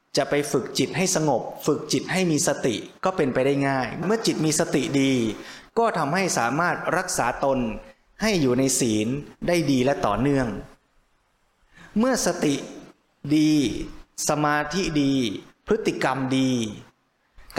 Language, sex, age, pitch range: Thai, male, 20-39, 135-175 Hz